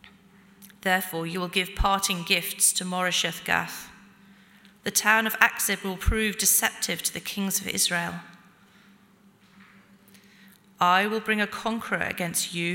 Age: 40-59